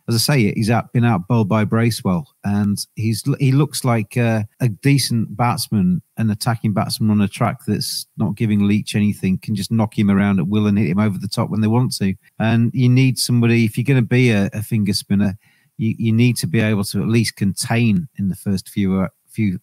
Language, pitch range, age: English, 105-125 Hz, 40-59